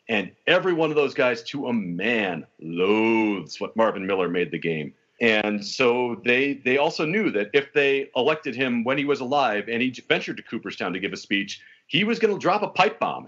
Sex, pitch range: male, 120-180 Hz